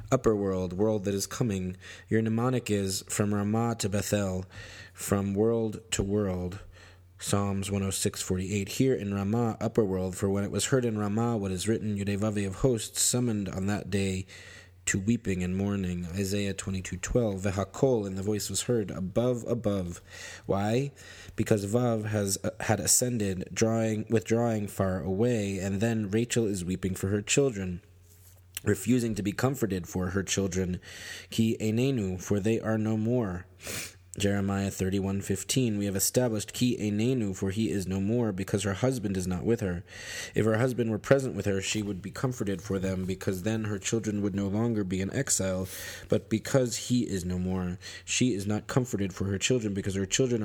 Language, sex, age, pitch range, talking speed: English, male, 30-49, 95-110 Hz, 180 wpm